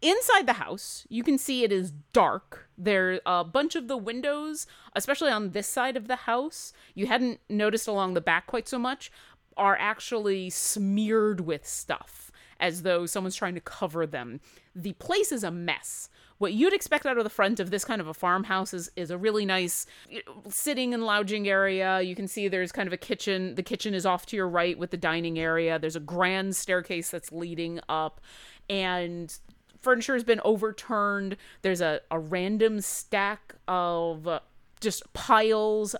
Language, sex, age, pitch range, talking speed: English, female, 30-49, 180-220 Hz, 185 wpm